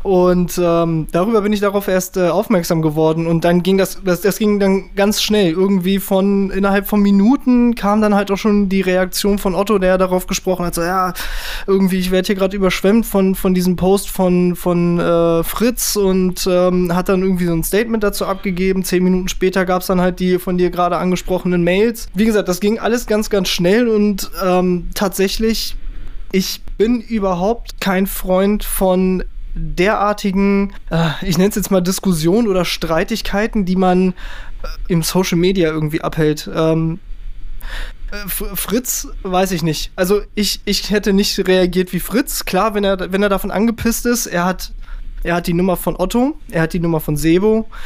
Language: German